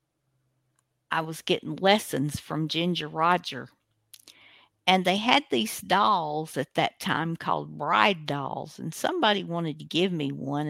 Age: 50-69